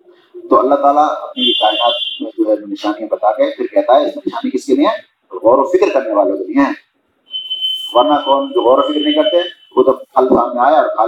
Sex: male